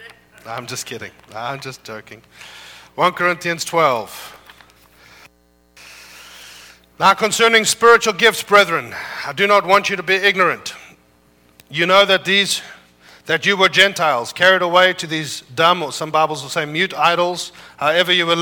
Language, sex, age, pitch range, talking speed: English, male, 40-59, 130-190 Hz, 145 wpm